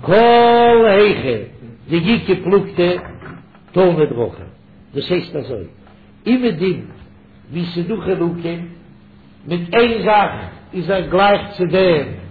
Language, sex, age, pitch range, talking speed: English, male, 60-79, 140-205 Hz, 115 wpm